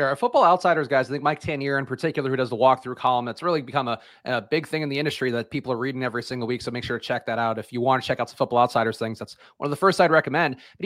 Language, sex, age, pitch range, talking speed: English, male, 30-49, 130-155 Hz, 315 wpm